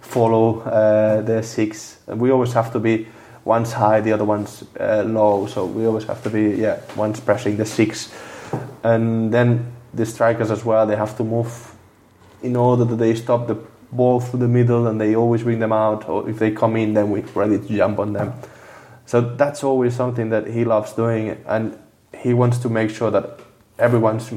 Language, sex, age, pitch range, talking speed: English, male, 20-39, 110-120 Hz, 200 wpm